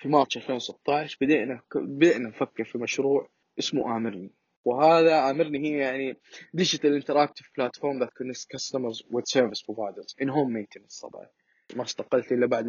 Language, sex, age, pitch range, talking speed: Arabic, male, 20-39, 115-150 Hz, 125 wpm